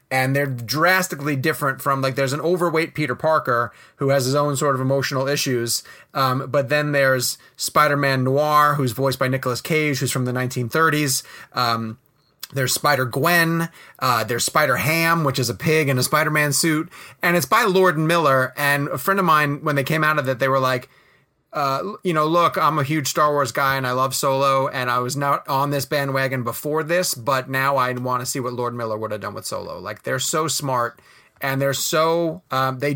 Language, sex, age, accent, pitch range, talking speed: English, male, 30-49, American, 130-160 Hz, 210 wpm